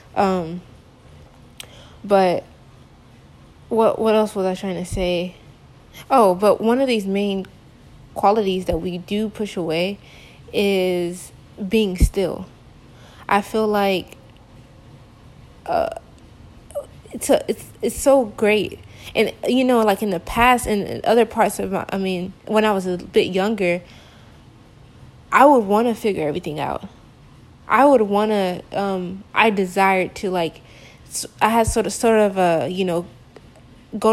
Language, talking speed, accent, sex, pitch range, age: English, 140 wpm, American, female, 180-210 Hz, 20-39